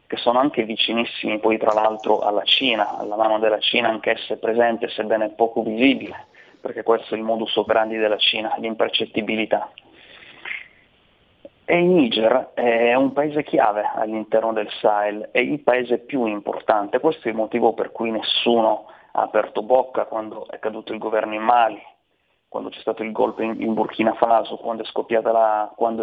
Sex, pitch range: male, 110-120 Hz